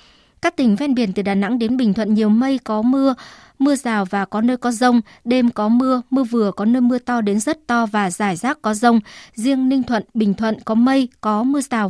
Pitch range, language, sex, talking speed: 215-260 Hz, Vietnamese, male, 240 wpm